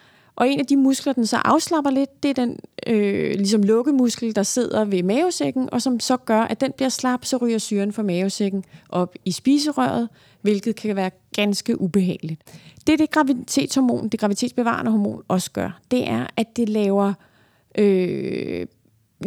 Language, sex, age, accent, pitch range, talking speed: Danish, female, 30-49, native, 185-250 Hz, 170 wpm